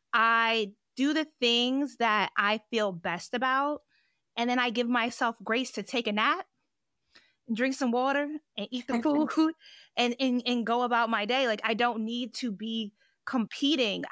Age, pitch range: 20-39, 220-260 Hz